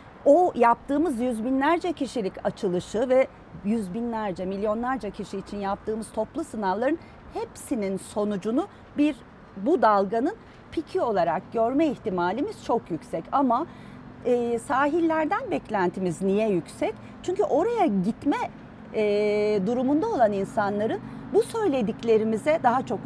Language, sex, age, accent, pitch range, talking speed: Turkish, female, 40-59, native, 205-300 Hz, 105 wpm